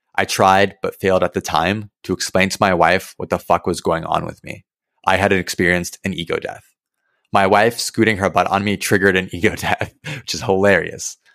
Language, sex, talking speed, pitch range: English, male, 210 wpm, 90-105 Hz